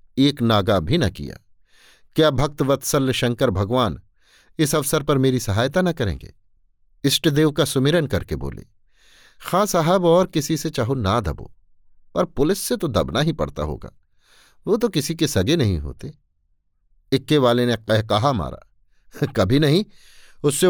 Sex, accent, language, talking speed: male, native, Hindi, 160 wpm